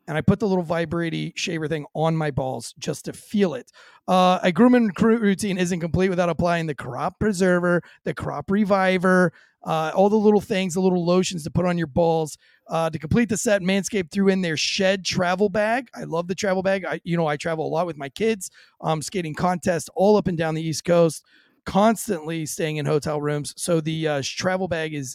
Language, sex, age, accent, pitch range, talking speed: English, male, 30-49, American, 160-195 Hz, 210 wpm